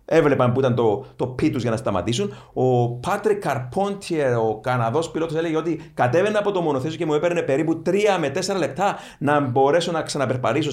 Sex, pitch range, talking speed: male, 125-170 Hz, 185 wpm